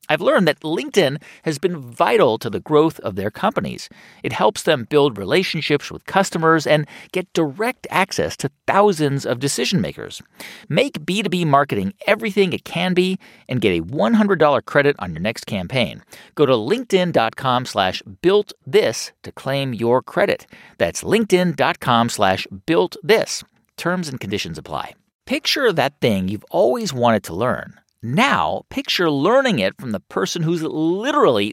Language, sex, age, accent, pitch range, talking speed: English, male, 50-69, American, 140-205 Hz, 150 wpm